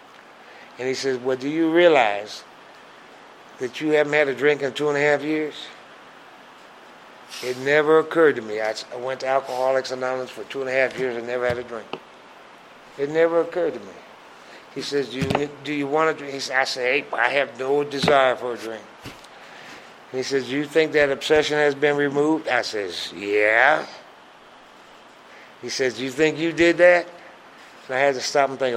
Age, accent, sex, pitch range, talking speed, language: 60-79, American, male, 125-155 Hz, 200 wpm, English